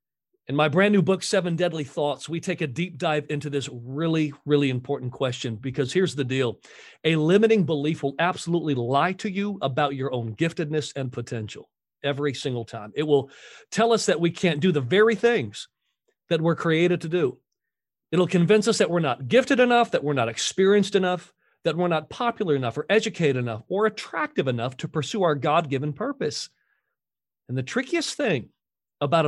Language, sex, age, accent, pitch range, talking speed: English, male, 40-59, American, 135-180 Hz, 185 wpm